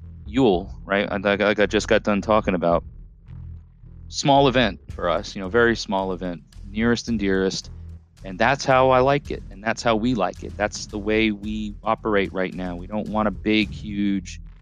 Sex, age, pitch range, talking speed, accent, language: male, 30-49, 90-110 Hz, 190 wpm, American, English